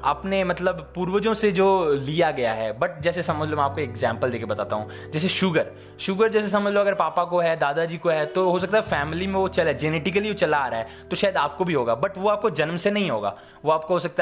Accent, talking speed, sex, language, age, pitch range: native, 260 wpm, male, Hindi, 20-39, 130-180 Hz